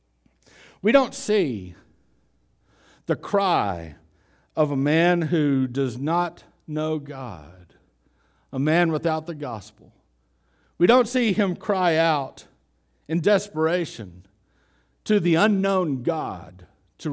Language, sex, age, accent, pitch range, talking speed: English, male, 60-79, American, 110-160 Hz, 110 wpm